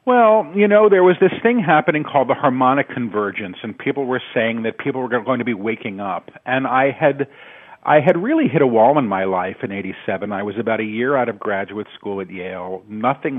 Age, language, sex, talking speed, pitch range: 50-69, English, male, 225 wpm, 105-135 Hz